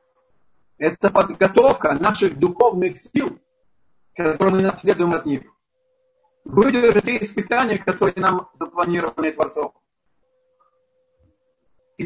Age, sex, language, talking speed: 50-69, male, Russian, 85 wpm